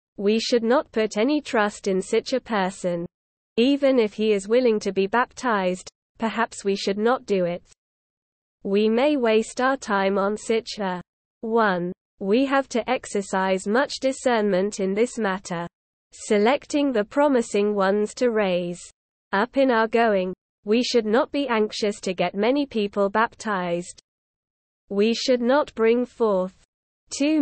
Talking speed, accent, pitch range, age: 150 wpm, British, 200-245 Hz, 20-39